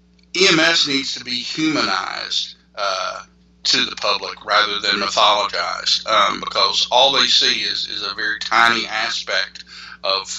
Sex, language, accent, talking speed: male, English, American, 140 wpm